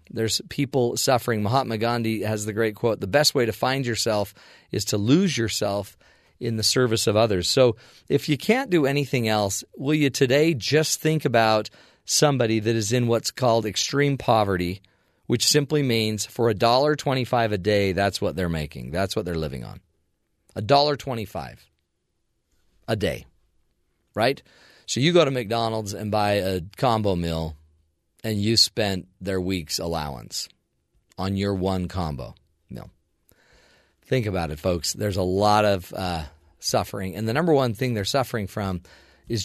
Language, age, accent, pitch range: English, 40-59, American, 95-135 Hz